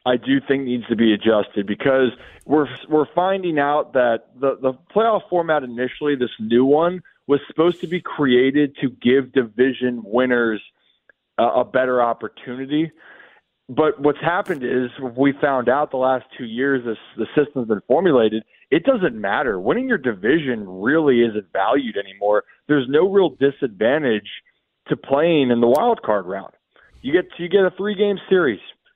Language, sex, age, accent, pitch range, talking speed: English, male, 20-39, American, 120-150 Hz, 165 wpm